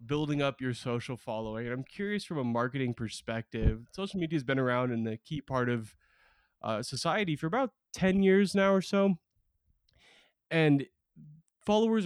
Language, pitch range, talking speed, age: English, 120-160 Hz, 165 wpm, 20-39